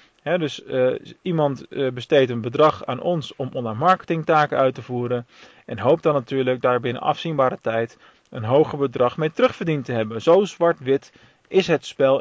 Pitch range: 125-150 Hz